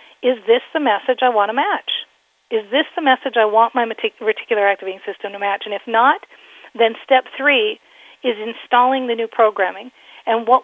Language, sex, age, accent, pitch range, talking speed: English, female, 40-59, American, 205-255 Hz, 185 wpm